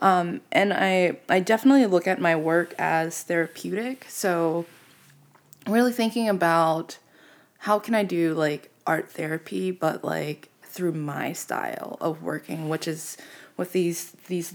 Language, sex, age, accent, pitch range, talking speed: English, female, 20-39, American, 155-185 Hz, 140 wpm